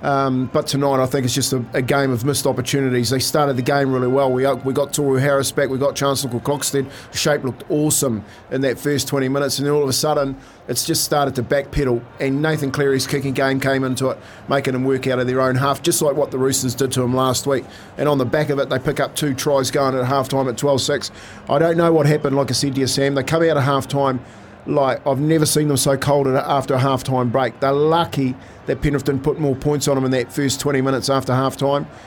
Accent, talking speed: Australian, 255 wpm